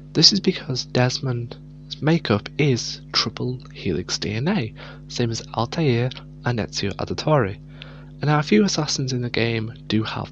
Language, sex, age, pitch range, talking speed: English, male, 20-39, 125-145 Hz, 145 wpm